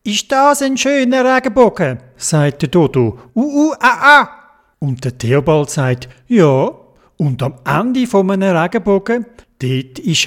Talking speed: 145 wpm